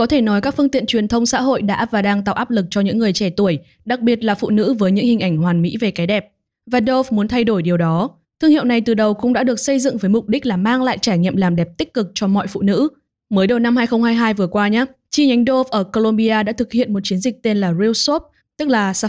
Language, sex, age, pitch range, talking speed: Vietnamese, female, 10-29, 200-250 Hz, 290 wpm